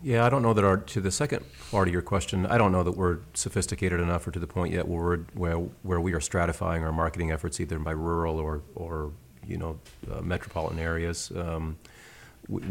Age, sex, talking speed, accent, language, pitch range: 40-59, male, 220 wpm, American, English, 80-95 Hz